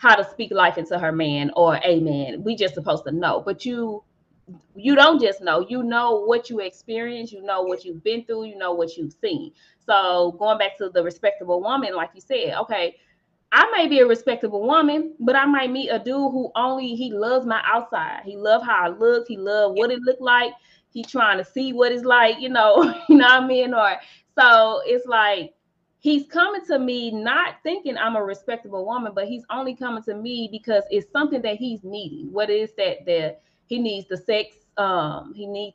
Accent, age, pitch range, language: American, 20-39, 200-270 Hz, English